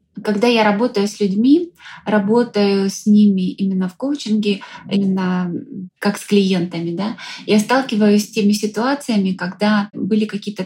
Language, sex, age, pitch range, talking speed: Russian, female, 20-39, 195-225 Hz, 135 wpm